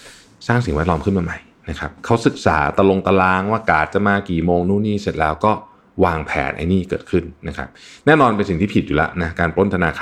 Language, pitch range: Thai, 80-120 Hz